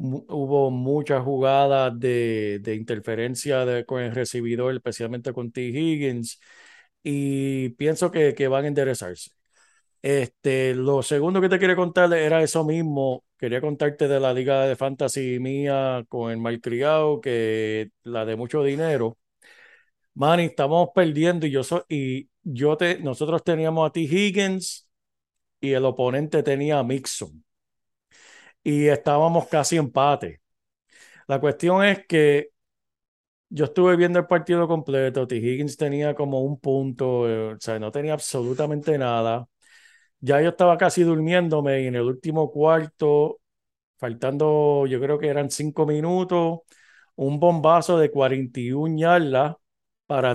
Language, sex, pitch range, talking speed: Spanish, male, 125-160 Hz, 140 wpm